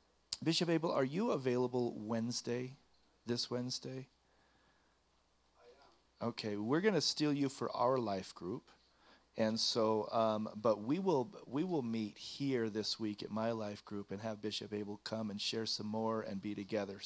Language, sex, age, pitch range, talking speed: English, male, 40-59, 110-125 Hz, 170 wpm